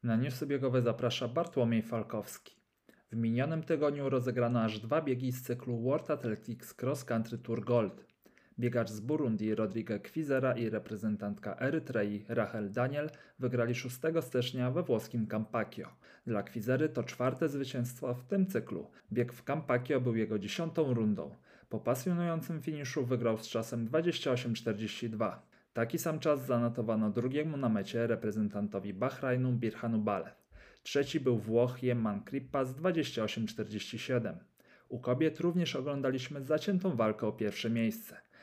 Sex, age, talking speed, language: male, 40-59, 135 wpm, Polish